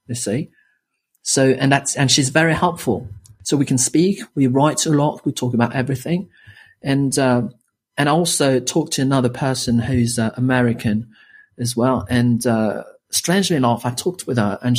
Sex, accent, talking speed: male, British, 175 wpm